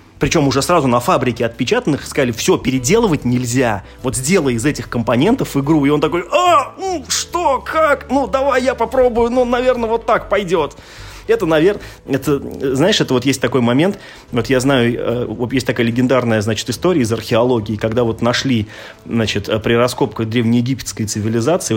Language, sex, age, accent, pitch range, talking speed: Russian, male, 30-49, native, 115-165 Hz, 165 wpm